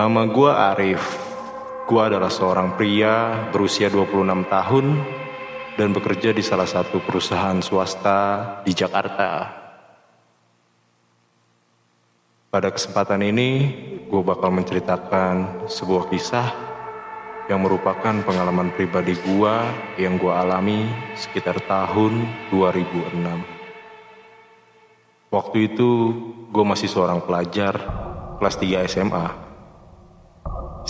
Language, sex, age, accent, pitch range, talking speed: Indonesian, male, 30-49, native, 95-115 Hz, 95 wpm